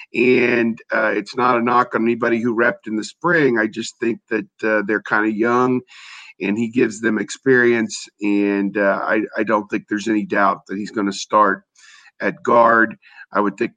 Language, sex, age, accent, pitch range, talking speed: English, male, 50-69, American, 100-120 Hz, 200 wpm